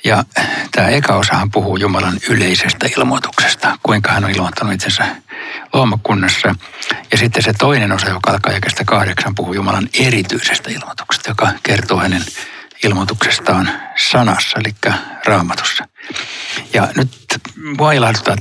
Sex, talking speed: male, 115 wpm